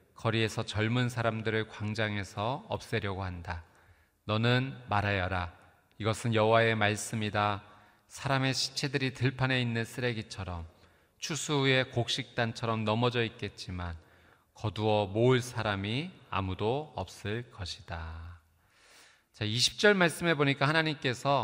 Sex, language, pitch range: male, Korean, 100-135 Hz